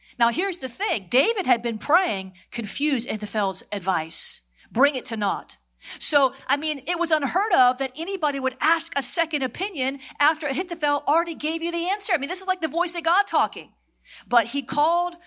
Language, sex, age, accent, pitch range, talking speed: English, female, 40-59, American, 235-330 Hz, 195 wpm